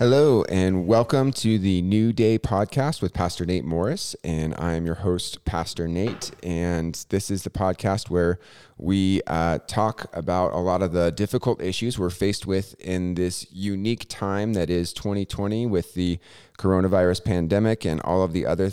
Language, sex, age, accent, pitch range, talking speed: English, male, 30-49, American, 80-100 Hz, 170 wpm